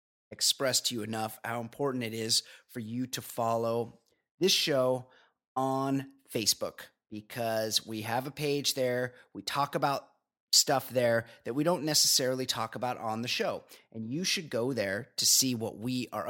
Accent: American